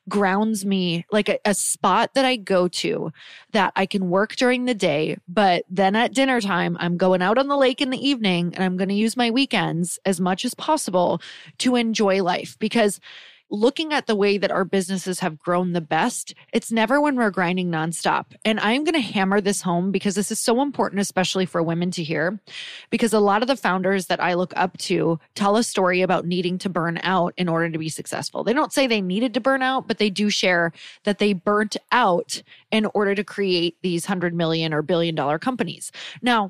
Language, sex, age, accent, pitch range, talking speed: English, female, 20-39, American, 180-235 Hz, 220 wpm